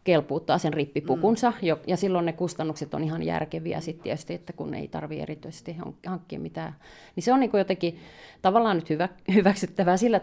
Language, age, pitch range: Finnish, 30-49, 150-180 Hz